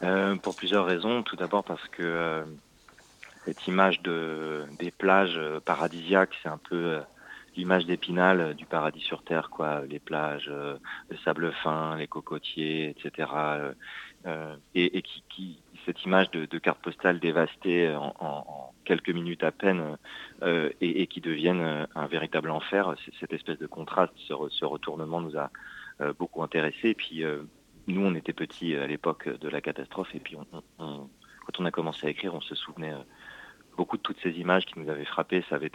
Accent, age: French, 40-59